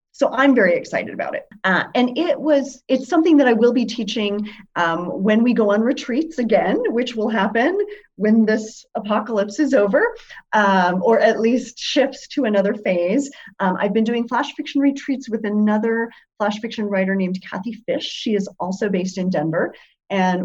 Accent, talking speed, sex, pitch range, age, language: American, 180 wpm, female, 185-235 Hz, 30-49, English